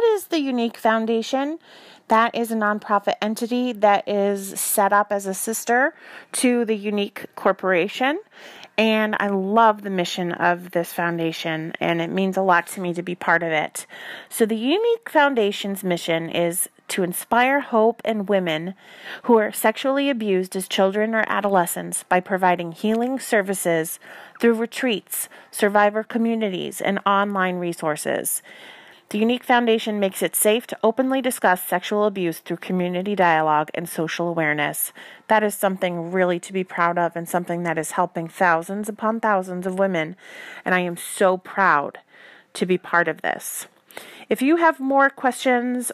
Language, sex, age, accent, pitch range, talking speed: English, female, 30-49, American, 180-230 Hz, 160 wpm